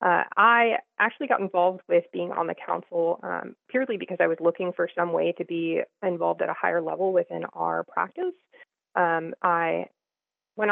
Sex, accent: female, American